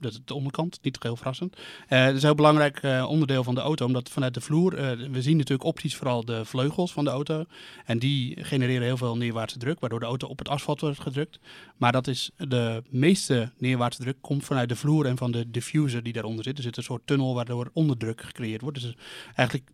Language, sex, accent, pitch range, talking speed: Dutch, male, Dutch, 120-140 Hz, 235 wpm